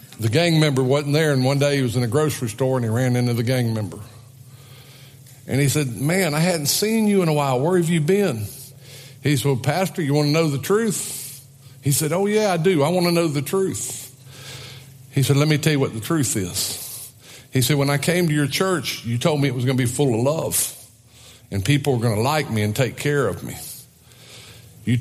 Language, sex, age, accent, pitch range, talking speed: English, male, 50-69, American, 120-145 Hz, 240 wpm